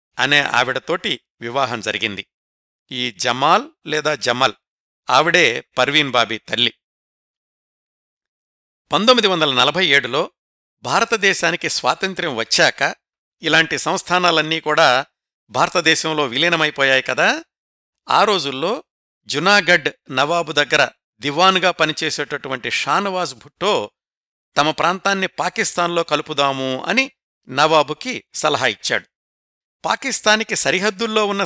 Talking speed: 85 wpm